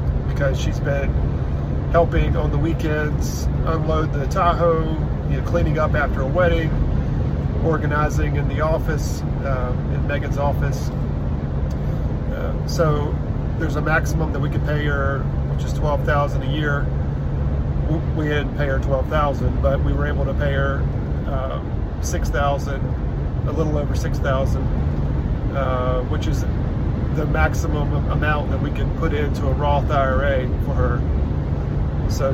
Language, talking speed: English, 150 wpm